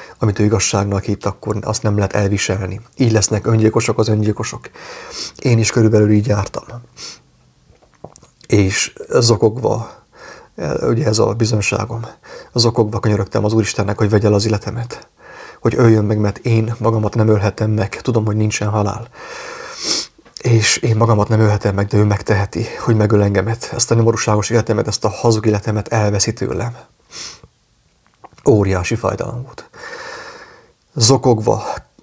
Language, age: English, 30-49